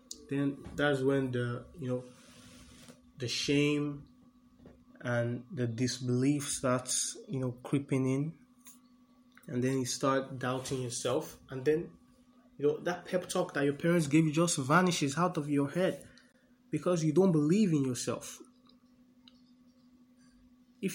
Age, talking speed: 20-39, 135 wpm